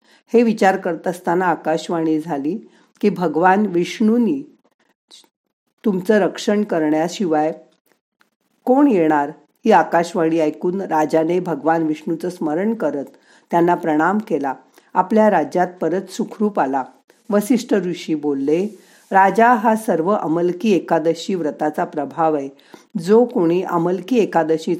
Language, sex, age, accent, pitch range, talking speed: Marathi, female, 50-69, native, 160-220 Hz, 85 wpm